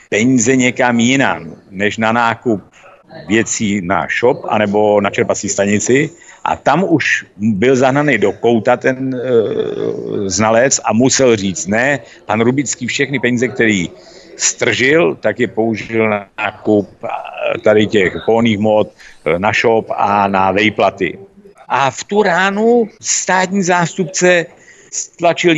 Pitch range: 105-150 Hz